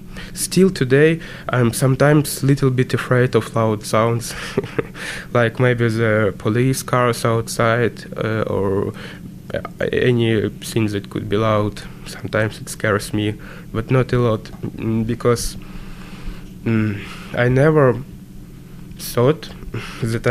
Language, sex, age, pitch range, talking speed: English, male, 20-39, 110-135 Hz, 115 wpm